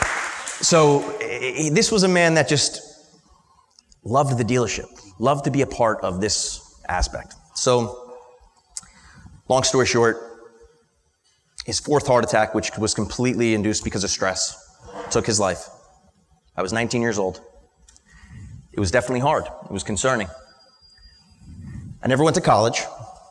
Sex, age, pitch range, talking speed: male, 30-49, 105-130 Hz, 135 wpm